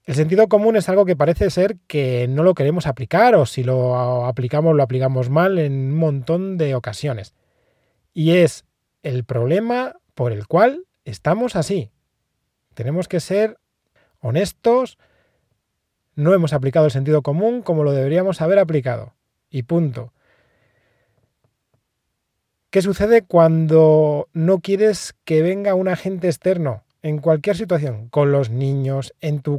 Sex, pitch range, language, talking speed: male, 125-175 Hz, Spanish, 140 wpm